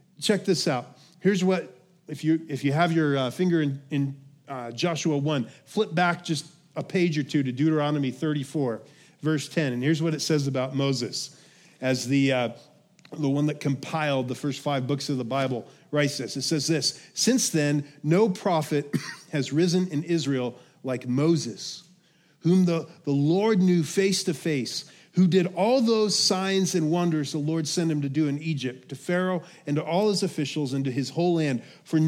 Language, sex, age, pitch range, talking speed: English, male, 40-59, 145-175 Hz, 190 wpm